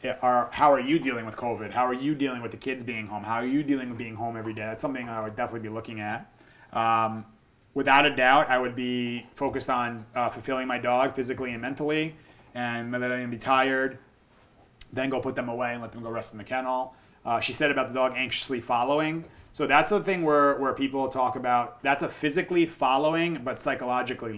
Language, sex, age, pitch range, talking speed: English, male, 30-49, 115-135 Hz, 220 wpm